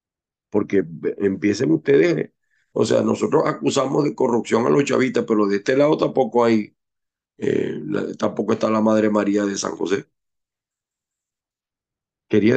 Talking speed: 135 wpm